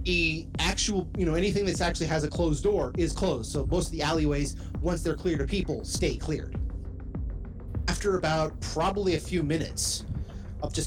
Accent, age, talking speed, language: American, 30-49, 180 wpm, English